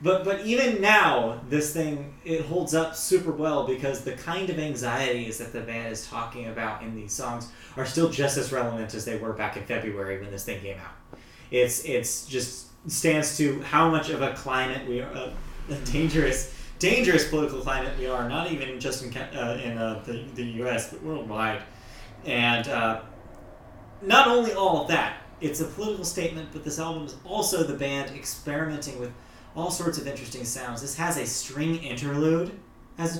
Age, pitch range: 30-49, 115-160 Hz